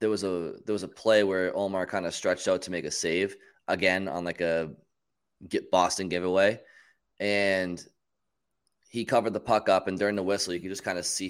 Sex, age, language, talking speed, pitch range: male, 20-39, English, 210 wpm, 85-105 Hz